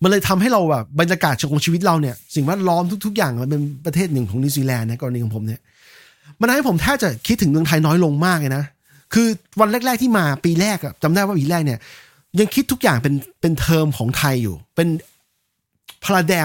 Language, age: Thai, 30-49